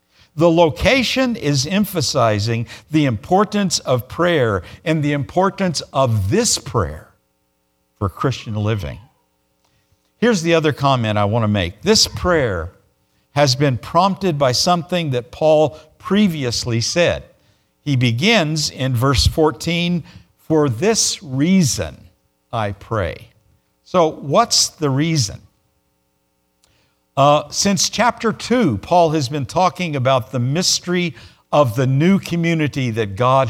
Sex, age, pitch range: male, 50-69, 110-170 Hz